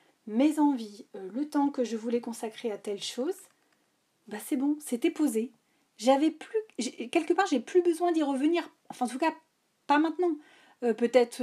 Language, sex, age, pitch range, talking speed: French, female, 30-49, 215-290 Hz, 185 wpm